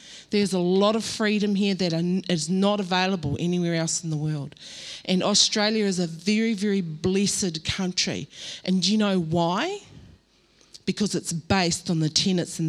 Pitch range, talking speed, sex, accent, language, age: 175-215 Hz, 165 wpm, female, Australian, English, 40-59